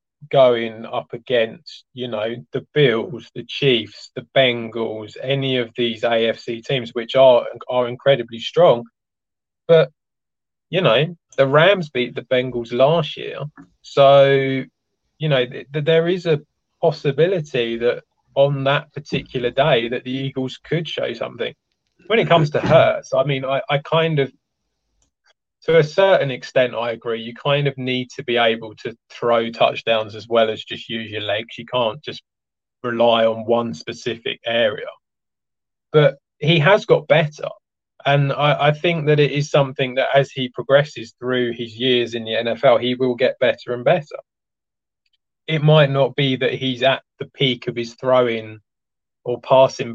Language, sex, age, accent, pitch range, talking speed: English, male, 20-39, British, 120-145 Hz, 160 wpm